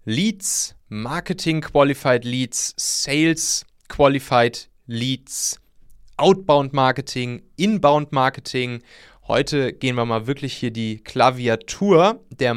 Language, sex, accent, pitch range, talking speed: German, male, German, 115-155 Hz, 75 wpm